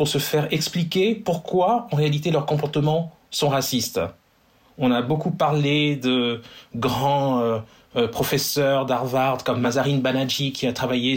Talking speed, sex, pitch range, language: 140 wpm, male, 130-170 Hz, French